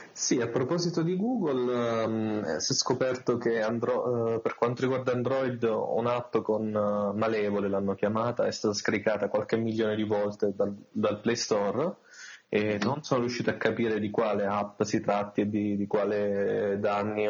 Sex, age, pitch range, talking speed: male, 20-39, 100-120 Hz, 170 wpm